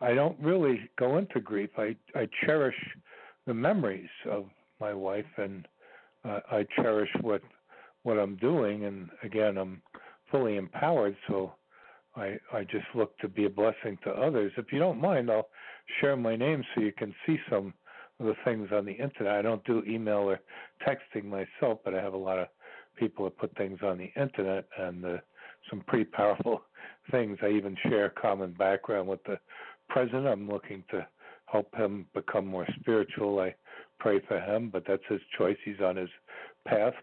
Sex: male